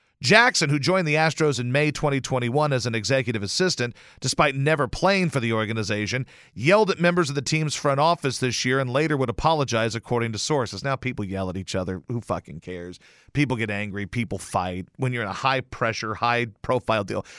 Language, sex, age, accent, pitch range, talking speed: English, male, 40-59, American, 120-180 Hz, 195 wpm